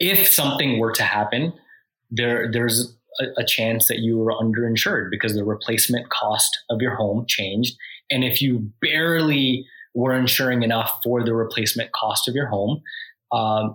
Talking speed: 160 wpm